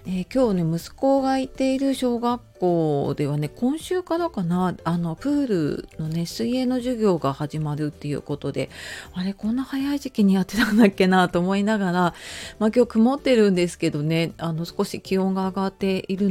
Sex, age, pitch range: female, 40-59, 160-220 Hz